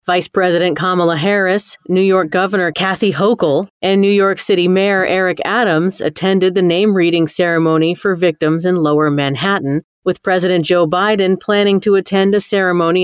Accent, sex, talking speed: American, female, 155 wpm